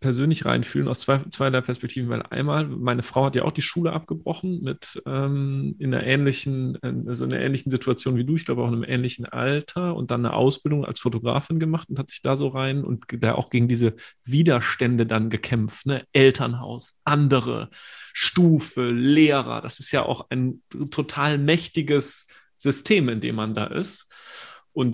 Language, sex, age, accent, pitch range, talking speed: German, male, 30-49, German, 120-145 Hz, 185 wpm